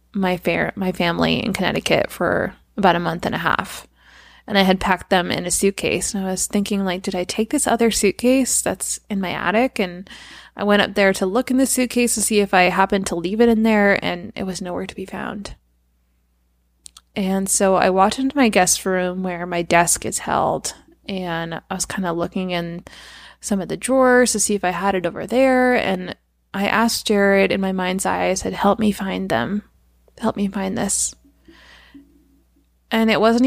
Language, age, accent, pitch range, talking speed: English, 20-39, American, 175-205 Hz, 210 wpm